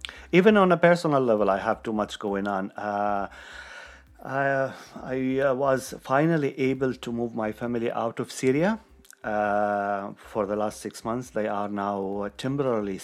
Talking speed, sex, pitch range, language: 155 wpm, male, 100-125 Hz, English